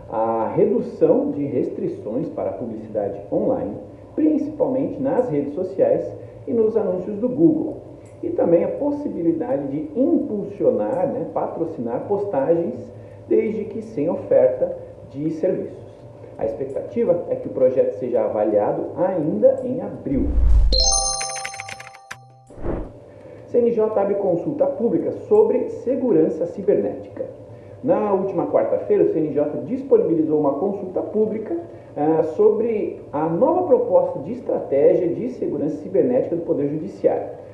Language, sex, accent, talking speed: Portuguese, male, Brazilian, 110 wpm